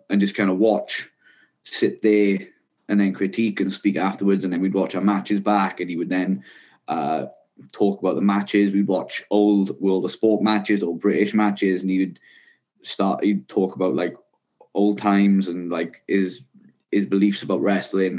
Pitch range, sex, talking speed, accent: 95-110 Hz, male, 185 wpm, British